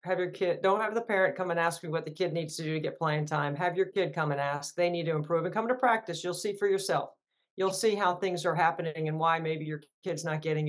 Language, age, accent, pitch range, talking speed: English, 40-59, American, 170-210 Hz, 290 wpm